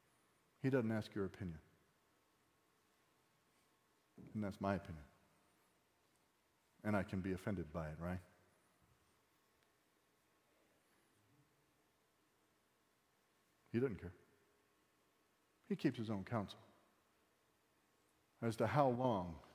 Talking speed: 90 wpm